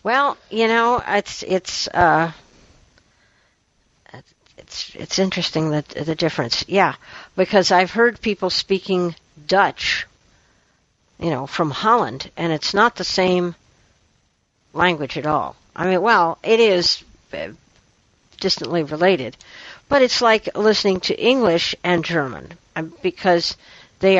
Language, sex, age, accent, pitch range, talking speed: English, female, 60-79, American, 150-190 Hz, 120 wpm